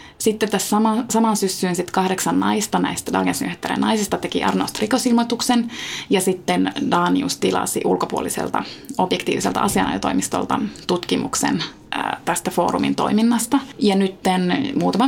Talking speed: 110 wpm